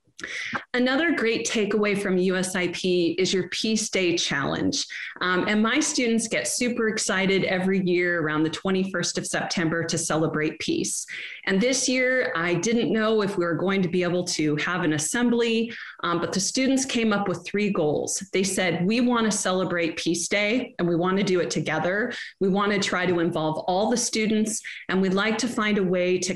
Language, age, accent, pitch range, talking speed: English, 30-49, American, 170-215 Hz, 195 wpm